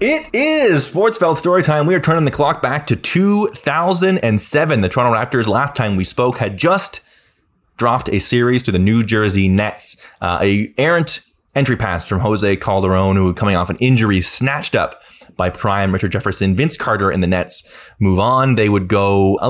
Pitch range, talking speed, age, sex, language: 95-130 Hz, 190 wpm, 20-39, male, English